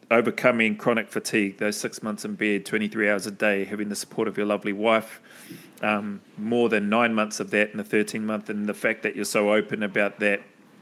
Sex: male